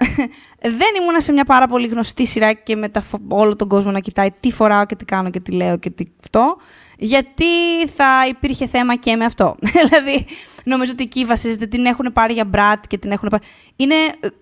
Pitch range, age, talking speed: 215-280 Hz, 20-39, 195 wpm